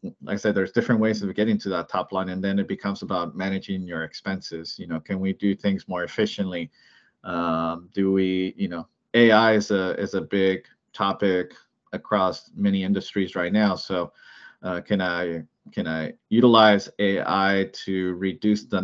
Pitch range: 90-105 Hz